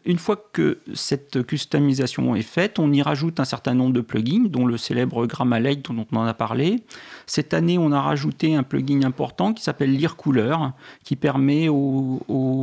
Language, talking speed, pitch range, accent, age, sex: French, 190 wpm, 125-155 Hz, French, 40-59, male